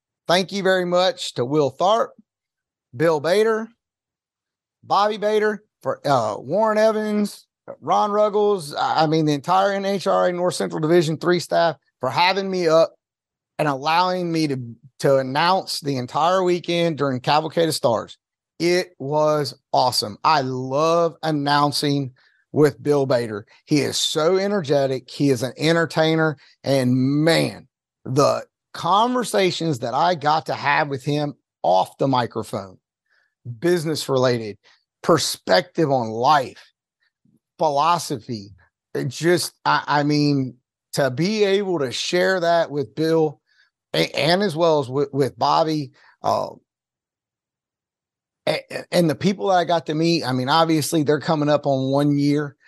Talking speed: 135 wpm